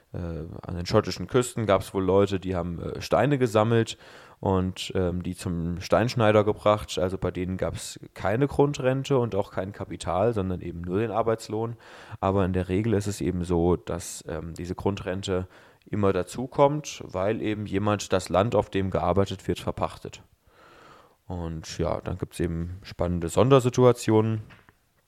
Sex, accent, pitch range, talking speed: male, German, 90-110 Hz, 160 wpm